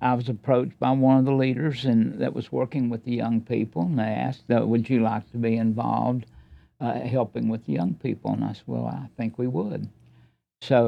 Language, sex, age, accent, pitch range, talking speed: English, male, 60-79, American, 110-130 Hz, 220 wpm